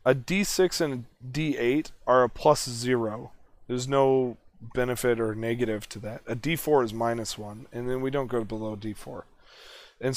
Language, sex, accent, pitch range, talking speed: English, male, American, 115-135 Hz, 170 wpm